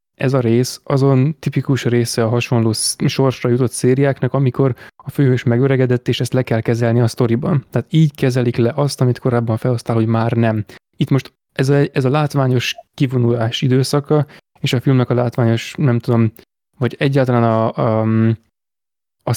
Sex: male